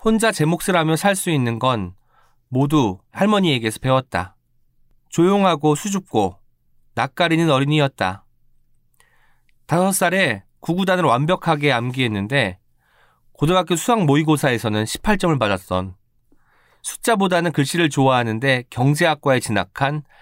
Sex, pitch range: male, 120-175 Hz